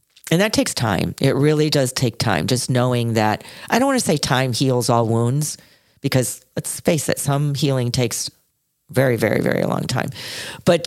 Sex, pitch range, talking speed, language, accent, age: female, 120-145 Hz, 190 wpm, English, American, 40-59